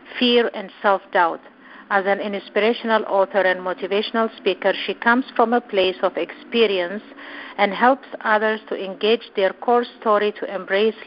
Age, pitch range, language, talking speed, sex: 50-69, 185-215 Hz, English, 145 wpm, female